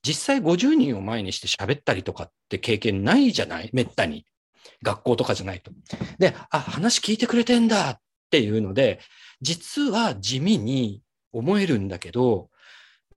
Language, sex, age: Japanese, male, 40-59